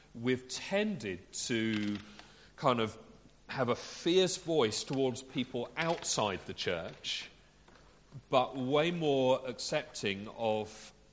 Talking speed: 100 wpm